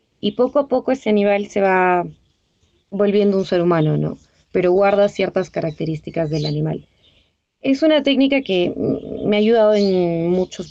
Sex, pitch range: female, 170-200 Hz